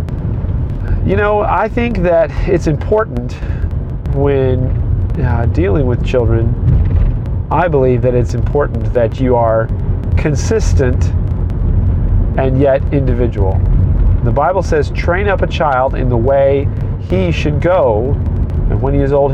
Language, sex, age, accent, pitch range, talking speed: English, male, 40-59, American, 85-110 Hz, 130 wpm